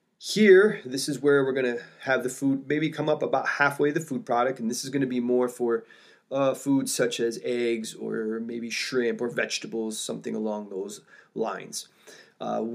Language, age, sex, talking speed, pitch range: English, 20-39, male, 195 wpm, 120-145 Hz